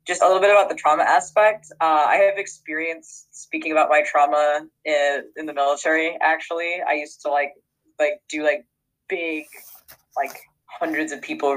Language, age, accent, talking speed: English, 20-39, American, 170 wpm